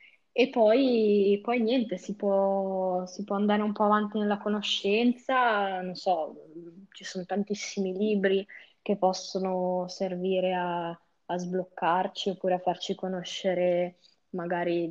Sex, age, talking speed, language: female, 20-39, 125 wpm, Italian